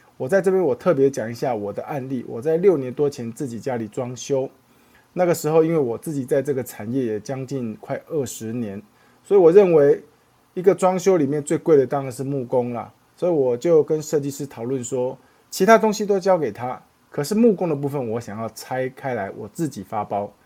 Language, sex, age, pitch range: Chinese, male, 20-39, 125-165 Hz